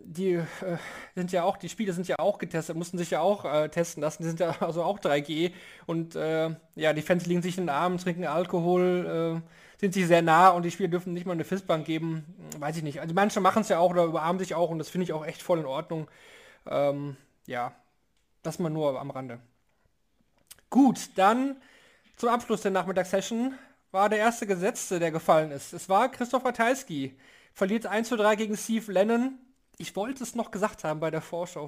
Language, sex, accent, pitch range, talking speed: German, male, German, 170-205 Hz, 210 wpm